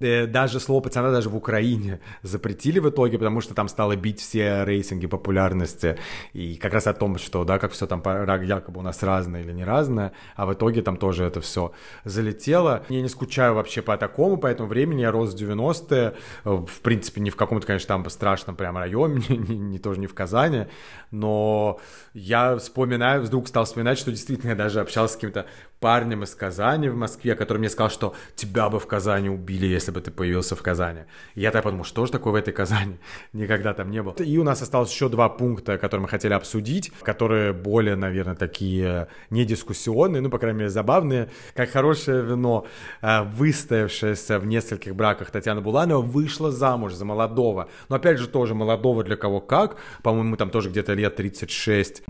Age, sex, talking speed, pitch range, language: 30-49, male, 190 wpm, 100-125 Hz, Russian